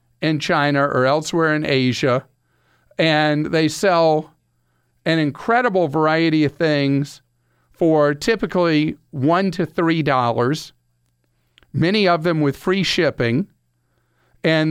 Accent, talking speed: American, 105 wpm